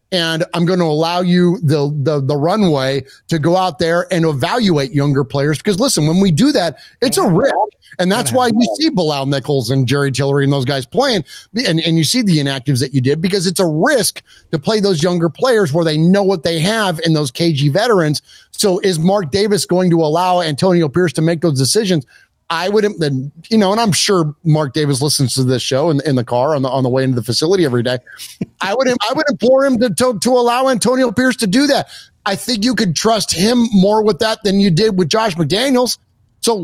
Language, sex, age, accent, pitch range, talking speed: English, male, 30-49, American, 150-205 Hz, 230 wpm